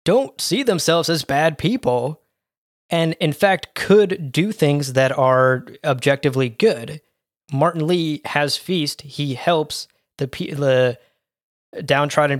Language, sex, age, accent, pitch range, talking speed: English, male, 20-39, American, 125-145 Hz, 120 wpm